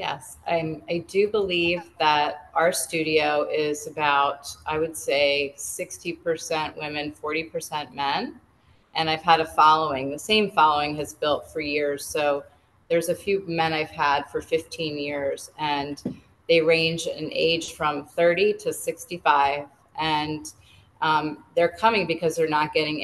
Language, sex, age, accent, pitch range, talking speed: English, female, 30-49, American, 150-165 Hz, 145 wpm